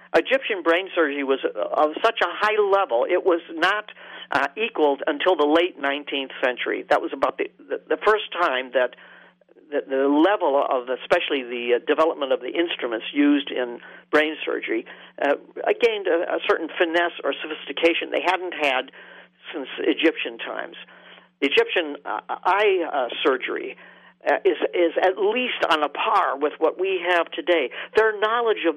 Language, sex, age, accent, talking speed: English, male, 50-69, American, 160 wpm